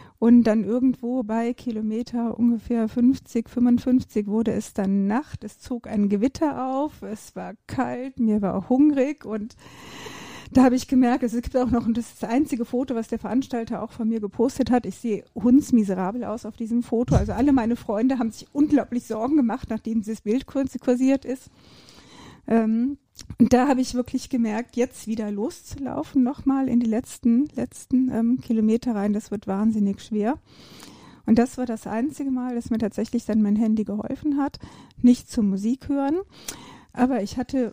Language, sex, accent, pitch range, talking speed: German, female, German, 220-255 Hz, 175 wpm